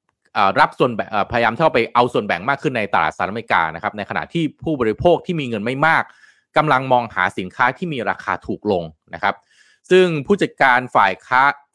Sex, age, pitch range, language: male, 20-39, 100-150 Hz, Thai